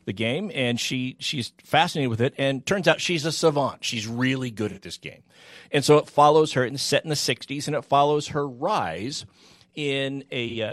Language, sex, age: English, male, 50-69